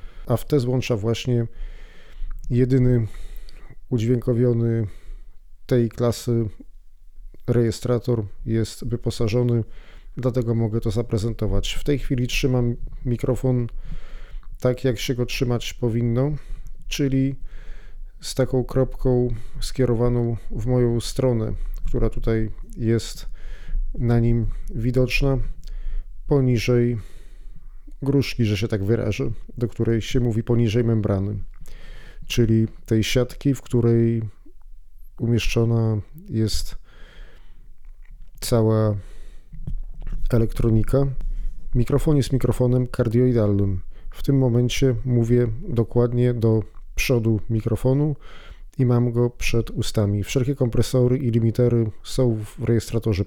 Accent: native